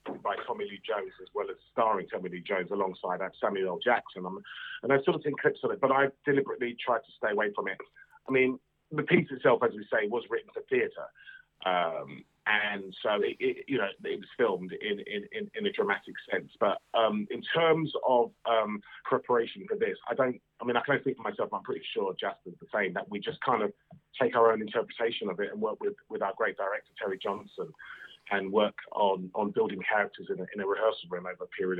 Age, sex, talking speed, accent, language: 30-49, male, 225 wpm, British, English